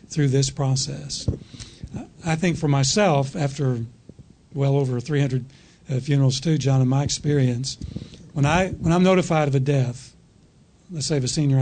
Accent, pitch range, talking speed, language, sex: American, 140-170 Hz, 150 wpm, English, male